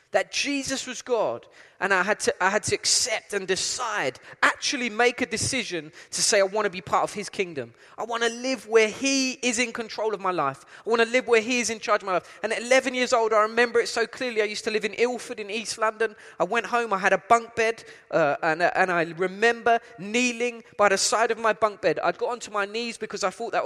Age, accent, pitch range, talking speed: 20-39, British, 185-230 Hz, 255 wpm